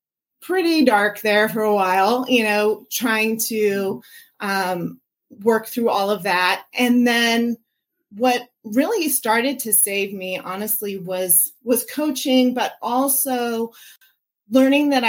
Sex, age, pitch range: female, 30-49, 195-250 Hz